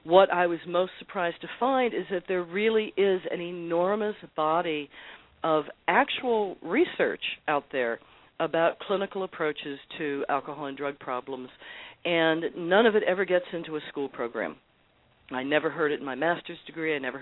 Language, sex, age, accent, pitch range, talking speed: English, female, 50-69, American, 140-180 Hz, 165 wpm